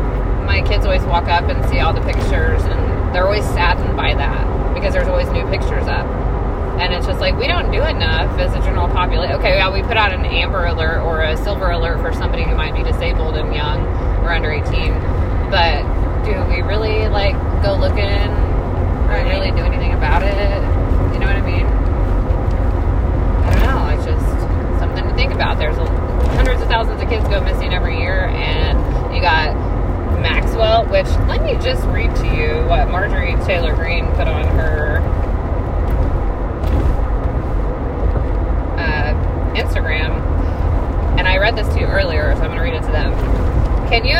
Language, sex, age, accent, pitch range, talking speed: English, female, 20-39, American, 80-95 Hz, 180 wpm